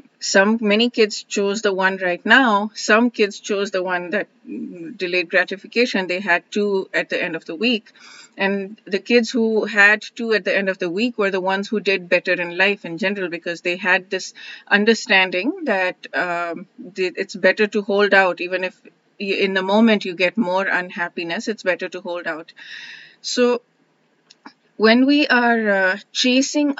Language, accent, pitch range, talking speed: English, Indian, 185-220 Hz, 175 wpm